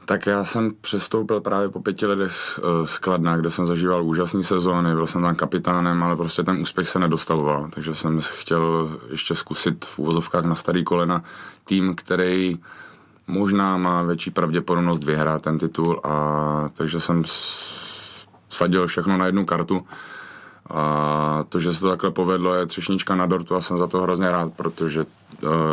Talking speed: 170 wpm